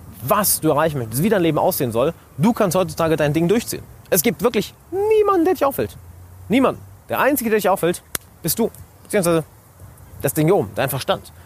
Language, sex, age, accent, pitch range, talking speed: German, male, 30-49, German, 105-170 Hz, 195 wpm